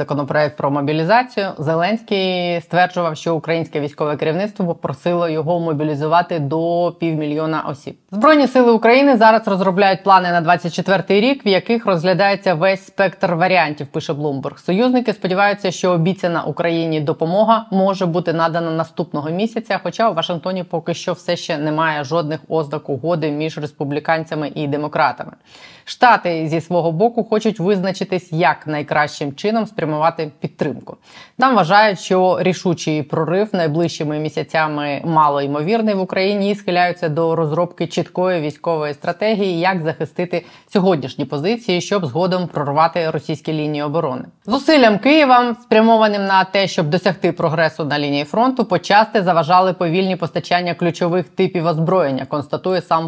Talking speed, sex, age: 135 wpm, female, 20-39